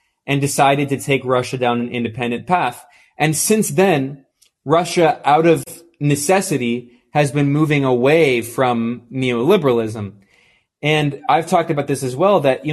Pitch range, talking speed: 125-155 Hz, 145 wpm